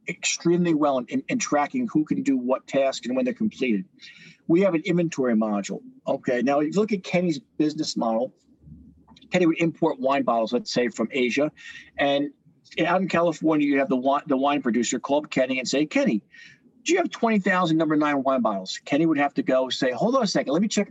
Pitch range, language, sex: 140-195 Hz, English, male